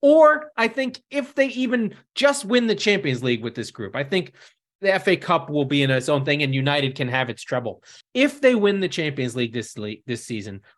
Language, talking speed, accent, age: English, 230 wpm, American, 30-49